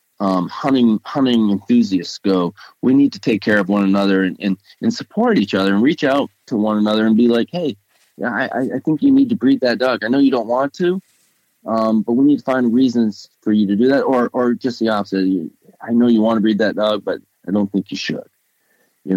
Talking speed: 245 wpm